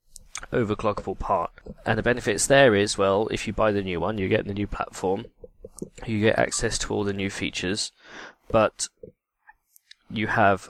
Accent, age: British, 20-39